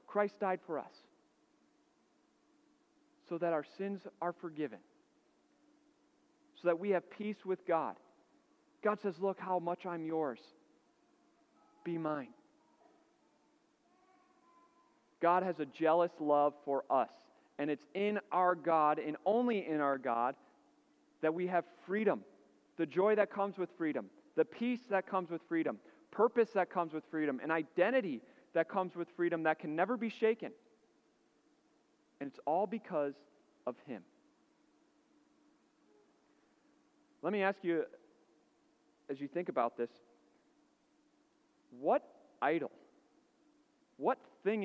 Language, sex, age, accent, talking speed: English, male, 40-59, American, 130 wpm